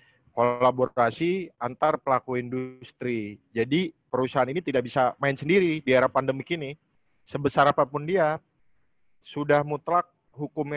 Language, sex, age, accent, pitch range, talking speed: Indonesian, male, 30-49, native, 125-155 Hz, 115 wpm